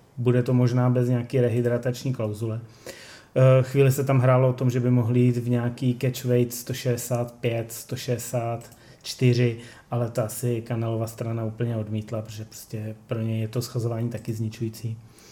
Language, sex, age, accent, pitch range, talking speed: Czech, male, 30-49, native, 120-130 Hz, 150 wpm